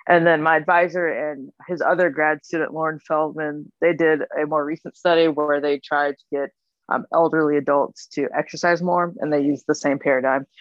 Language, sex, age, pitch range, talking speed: English, female, 20-39, 145-170 Hz, 190 wpm